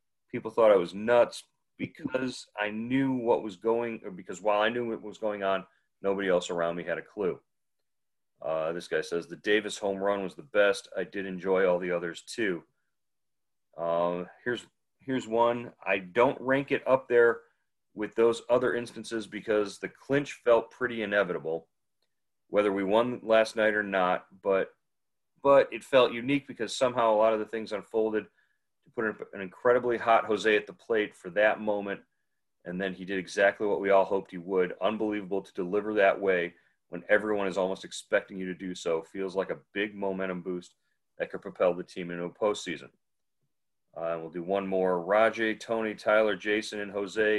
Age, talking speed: 40-59, 185 wpm